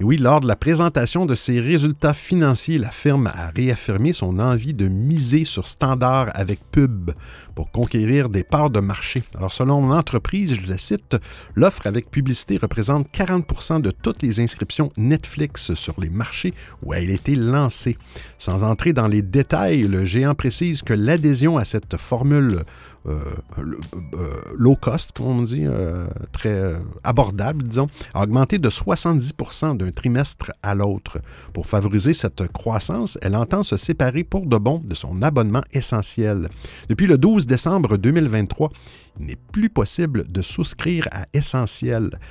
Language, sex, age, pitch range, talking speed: French, male, 50-69, 100-145 Hz, 160 wpm